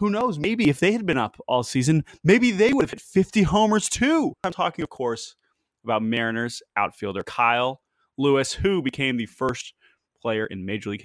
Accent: American